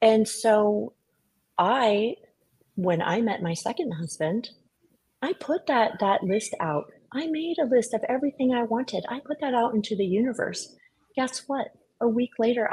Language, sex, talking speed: English, female, 165 wpm